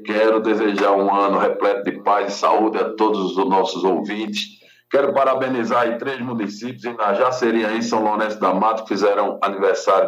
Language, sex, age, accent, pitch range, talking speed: Portuguese, male, 60-79, Brazilian, 95-135 Hz, 165 wpm